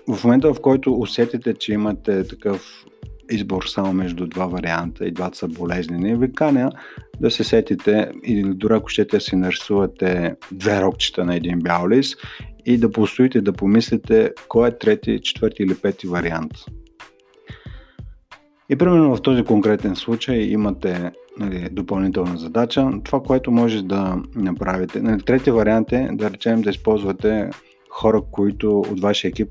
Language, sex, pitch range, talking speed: Bulgarian, male, 95-115 Hz, 150 wpm